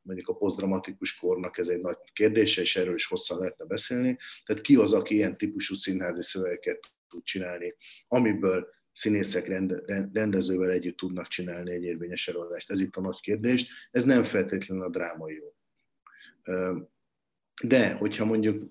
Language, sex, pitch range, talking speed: Hungarian, male, 90-115 Hz, 155 wpm